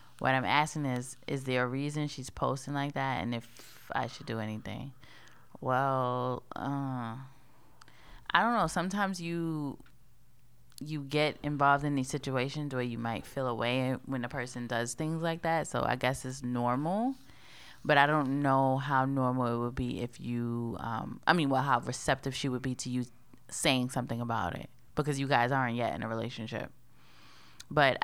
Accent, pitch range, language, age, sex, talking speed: American, 120-145 Hz, English, 20-39, female, 180 wpm